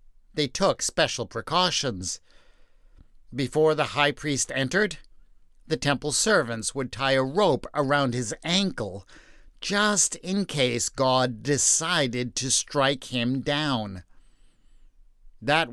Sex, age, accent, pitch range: male, 50-69, American, 125-160 Hz